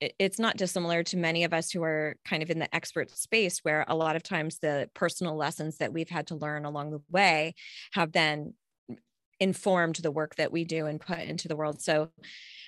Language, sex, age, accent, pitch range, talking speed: English, female, 20-39, American, 155-180 Hz, 220 wpm